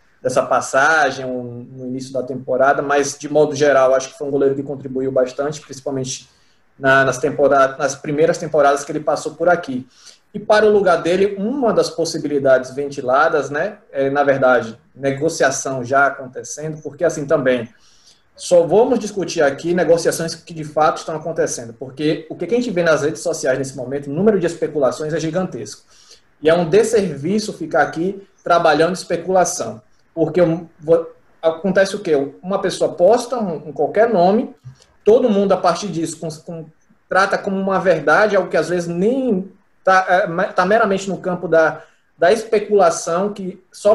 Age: 20-39